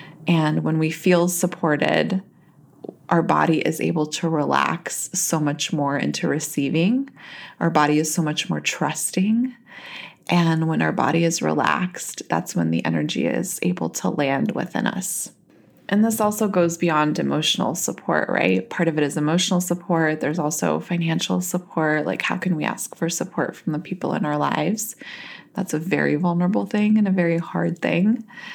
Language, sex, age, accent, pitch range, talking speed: English, female, 20-39, American, 155-180 Hz, 170 wpm